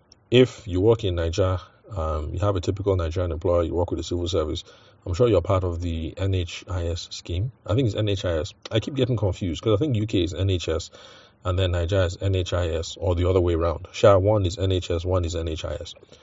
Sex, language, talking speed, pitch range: male, English, 205 wpm, 85-100 Hz